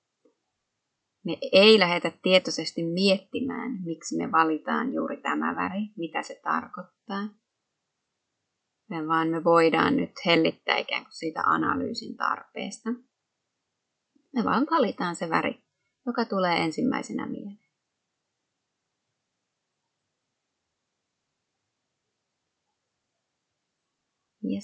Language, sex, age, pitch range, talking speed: Finnish, female, 30-49, 170-225 Hz, 85 wpm